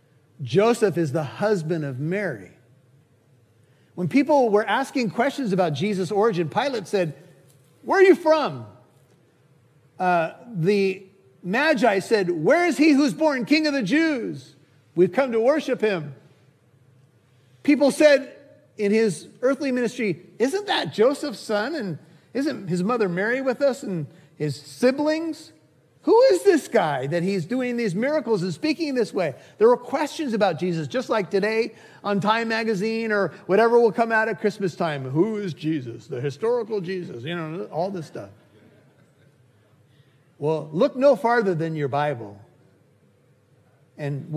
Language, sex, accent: English, male, American